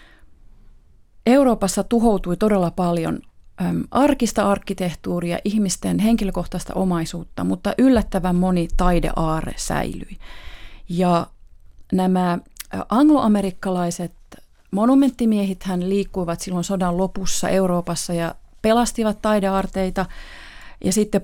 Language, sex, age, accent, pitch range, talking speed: Finnish, female, 30-49, native, 175-210 Hz, 80 wpm